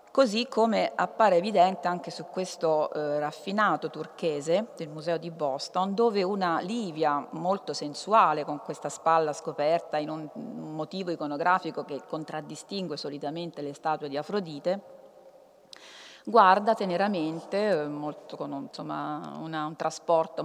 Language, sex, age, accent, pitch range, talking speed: Italian, female, 40-59, native, 150-205 Hz, 110 wpm